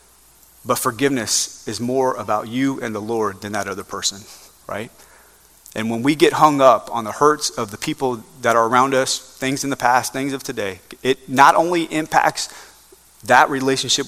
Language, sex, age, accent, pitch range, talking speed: English, male, 30-49, American, 115-140 Hz, 185 wpm